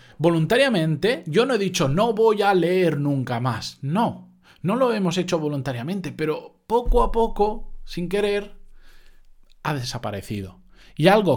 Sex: male